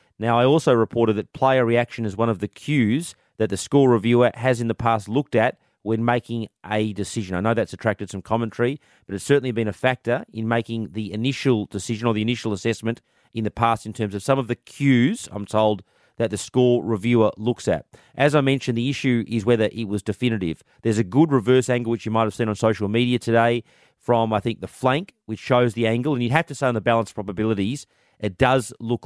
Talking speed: 225 wpm